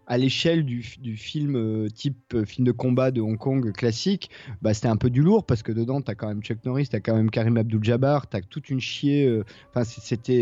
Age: 30-49